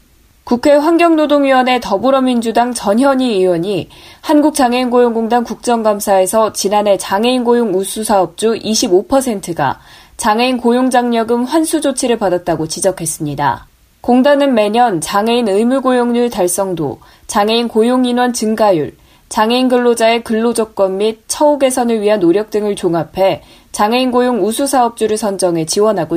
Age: 20-39